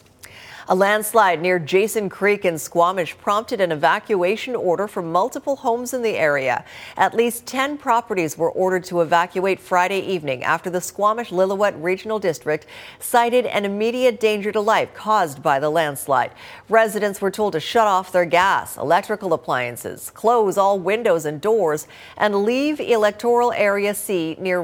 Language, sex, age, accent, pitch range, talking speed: English, female, 50-69, American, 170-220 Hz, 155 wpm